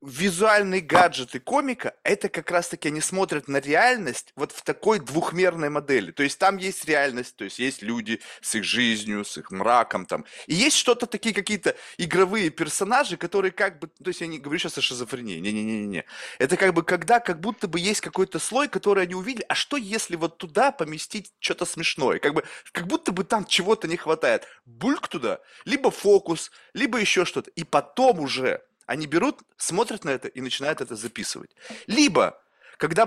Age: 20-39